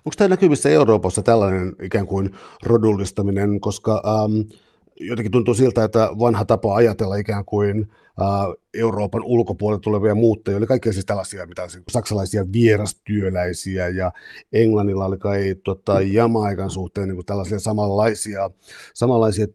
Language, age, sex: Finnish, 50-69, male